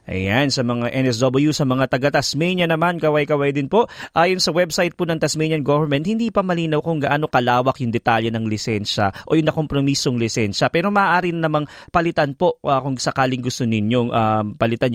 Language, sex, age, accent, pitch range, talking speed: English, male, 20-39, Filipino, 120-150 Hz, 175 wpm